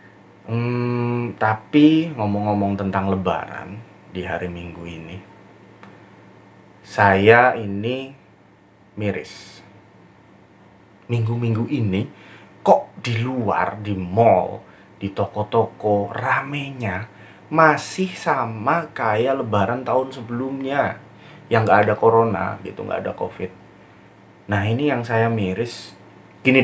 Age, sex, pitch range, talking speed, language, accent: 20-39, male, 95-115 Hz, 95 wpm, Indonesian, native